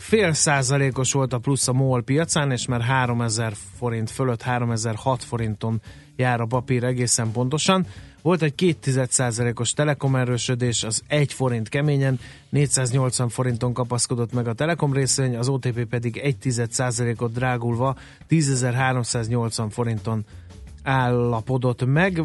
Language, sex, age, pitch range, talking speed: Hungarian, male, 30-49, 115-135 Hz, 125 wpm